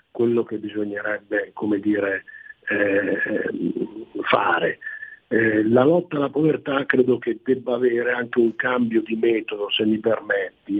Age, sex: 50-69, male